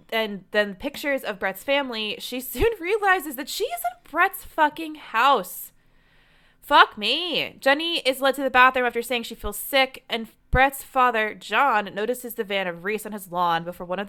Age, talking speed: 20-39, 185 wpm